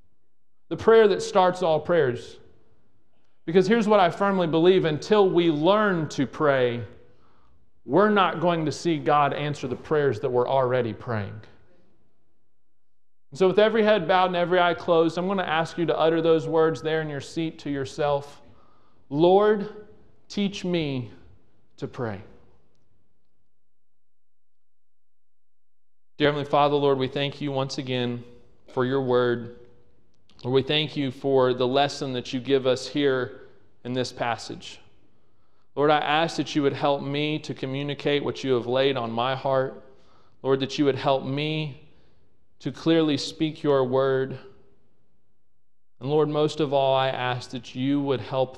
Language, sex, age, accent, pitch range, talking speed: English, male, 40-59, American, 115-150 Hz, 155 wpm